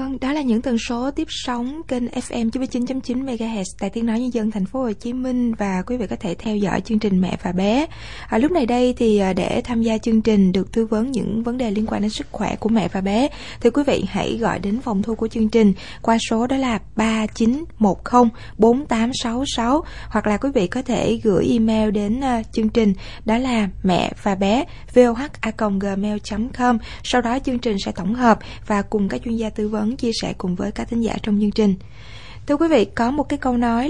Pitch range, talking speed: 205-245 Hz, 220 wpm